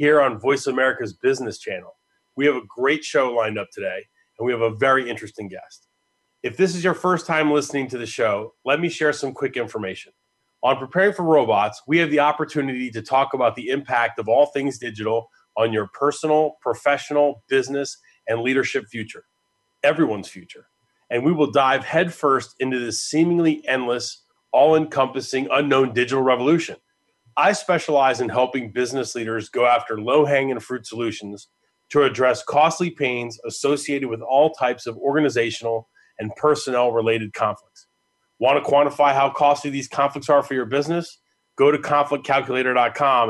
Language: English